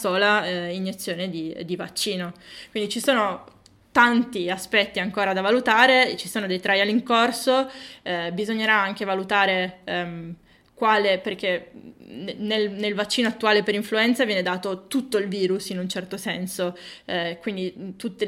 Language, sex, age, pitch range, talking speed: Italian, female, 20-39, 180-220 Hz, 150 wpm